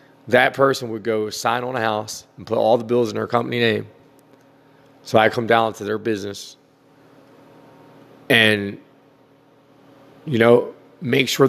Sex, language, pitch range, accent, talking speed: male, English, 100-135 Hz, American, 150 wpm